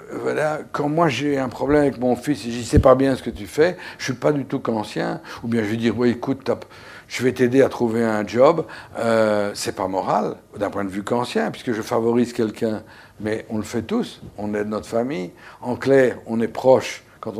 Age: 60-79